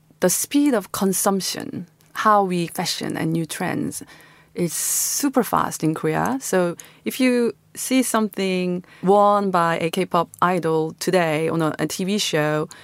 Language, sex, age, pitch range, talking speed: English, female, 30-49, 165-200 Hz, 145 wpm